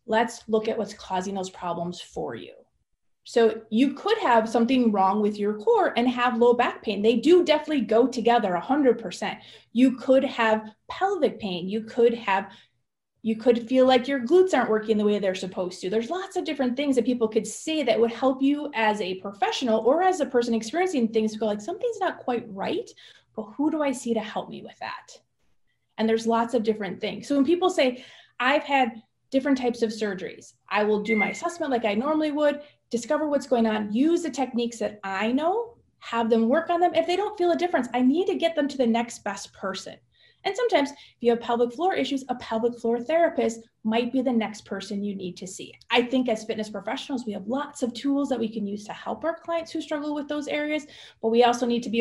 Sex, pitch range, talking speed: female, 220-285 Hz, 225 wpm